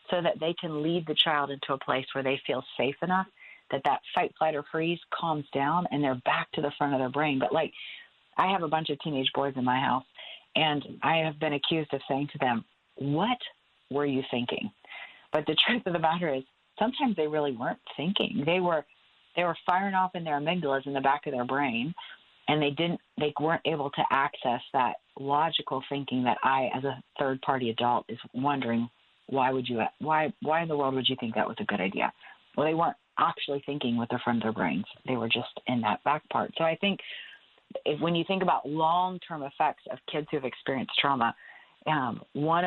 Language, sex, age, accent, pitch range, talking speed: English, female, 40-59, American, 135-165 Hz, 215 wpm